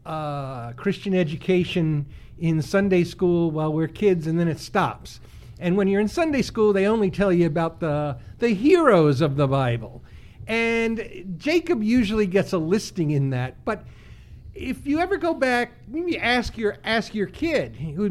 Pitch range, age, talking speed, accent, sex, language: 165-235 Hz, 50-69, 170 wpm, American, male, English